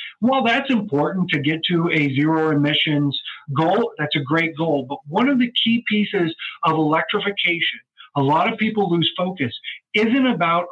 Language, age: English, 40-59